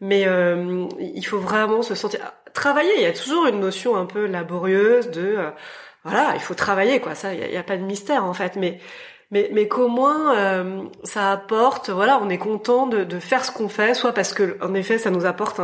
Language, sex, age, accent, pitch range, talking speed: French, female, 20-39, French, 190-245 Hz, 230 wpm